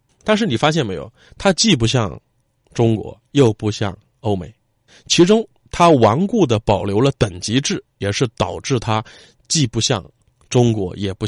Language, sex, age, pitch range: Chinese, male, 20-39, 100-145 Hz